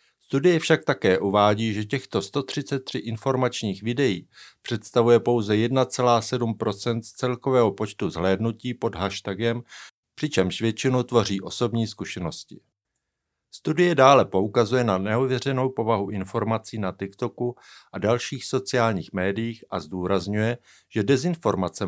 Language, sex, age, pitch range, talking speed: Czech, male, 50-69, 105-125 Hz, 110 wpm